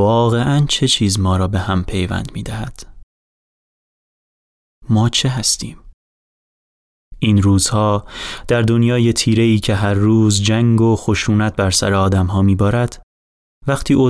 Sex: male